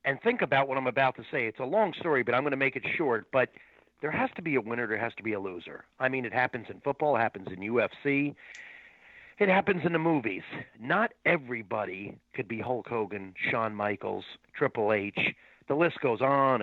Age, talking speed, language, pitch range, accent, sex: 40-59, 220 wpm, English, 120-170 Hz, American, male